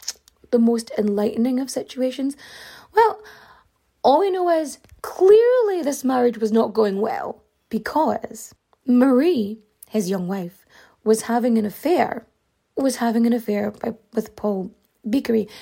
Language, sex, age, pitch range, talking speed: English, female, 20-39, 220-270 Hz, 125 wpm